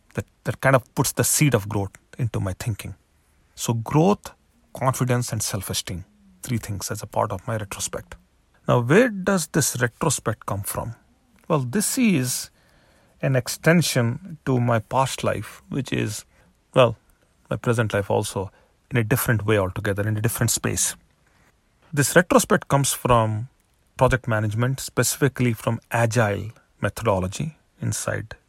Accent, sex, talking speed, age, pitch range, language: Indian, male, 145 wpm, 40-59, 105-125 Hz, English